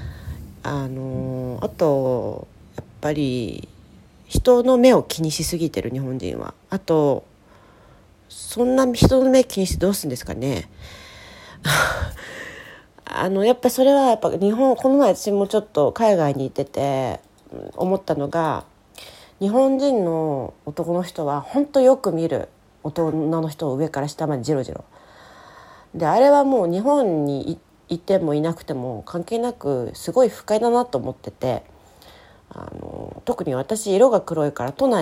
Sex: female